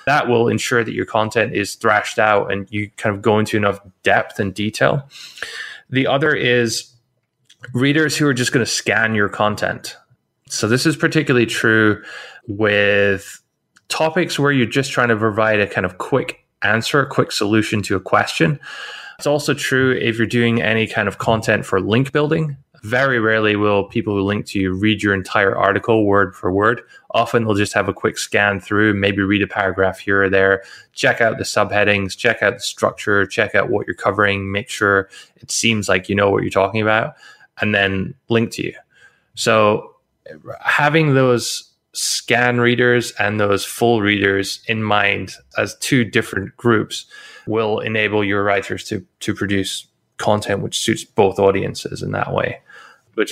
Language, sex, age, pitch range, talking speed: English, male, 20-39, 100-125 Hz, 180 wpm